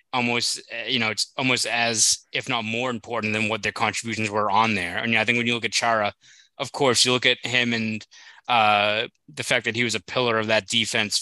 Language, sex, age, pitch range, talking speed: English, male, 20-39, 105-115 Hz, 230 wpm